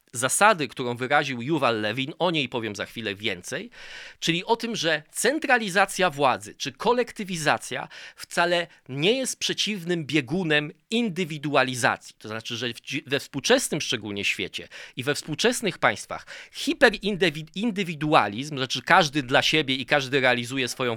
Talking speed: 130 wpm